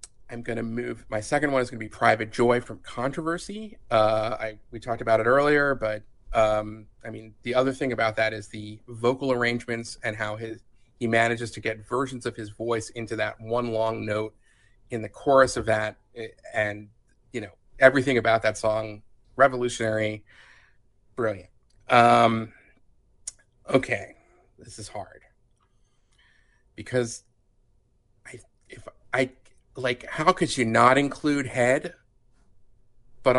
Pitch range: 110-125 Hz